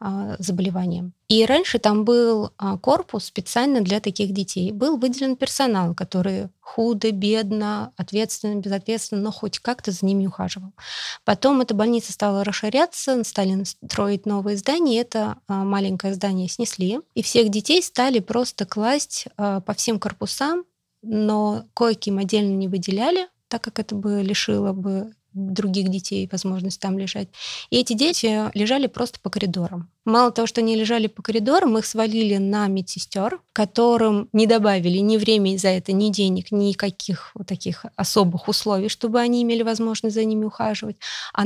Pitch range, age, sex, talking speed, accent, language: 195-230 Hz, 20-39, female, 145 wpm, native, Russian